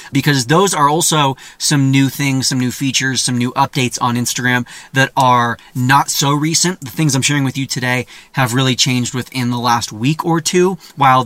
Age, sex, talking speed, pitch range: 30-49, male, 195 wpm, 125-160 Hz